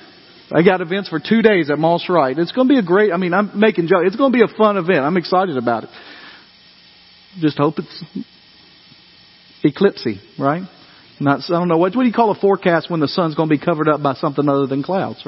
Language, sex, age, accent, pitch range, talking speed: English, male, 40-59, American, 115-175 Hz, 235 wpm